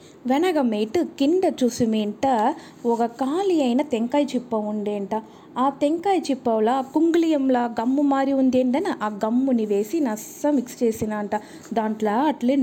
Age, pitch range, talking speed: 20-39, 230-325 Hz, 120 wpm